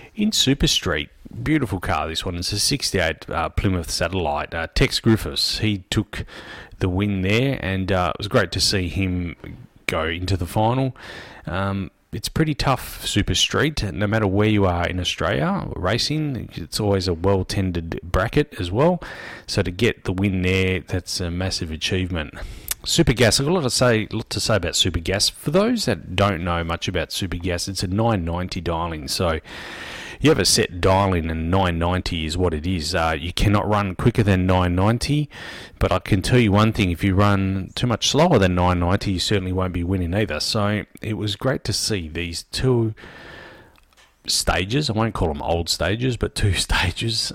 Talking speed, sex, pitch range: 190 wpm, male, 85-110 Hz